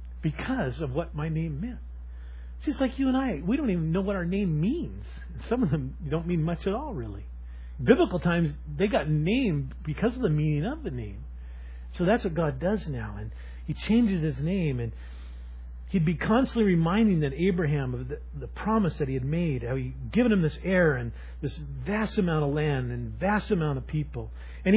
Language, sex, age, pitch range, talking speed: English, male, 40-59, 130-210 Hz, 205 wpm